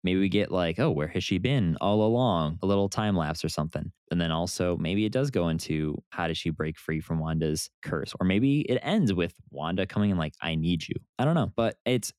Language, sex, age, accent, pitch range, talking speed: English, male, 20-39, American, 80-110 Hz, 245 wpm